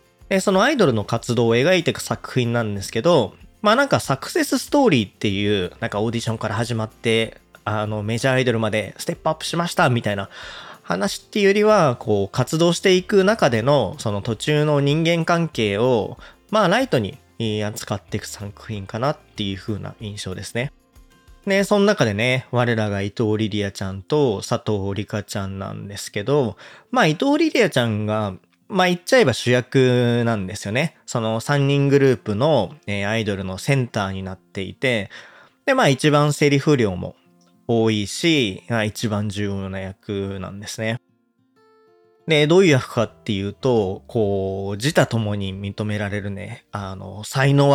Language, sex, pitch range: Japanese, male, 100-140 Hz